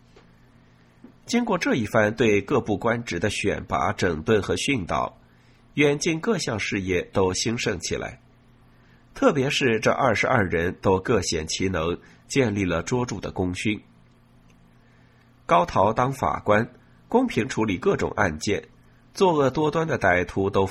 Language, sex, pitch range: Chinese, male, 90-125 Hz